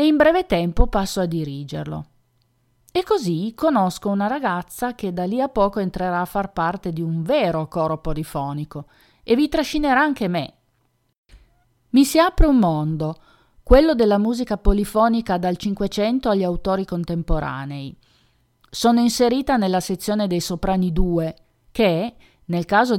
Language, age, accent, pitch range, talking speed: Italian, 40-59, native, 165-225 Hz, 140 wpm